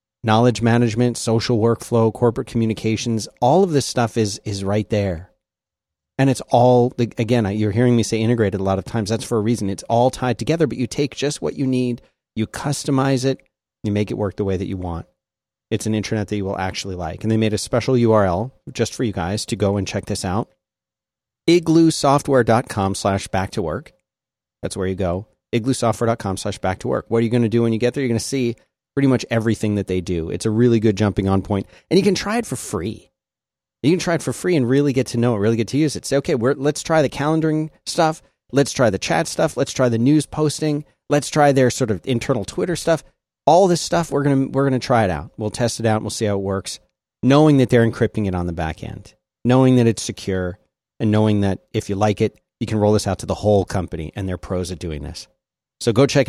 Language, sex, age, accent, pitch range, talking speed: English, male, 30-49, American, 100-130 Hz, 245 wpm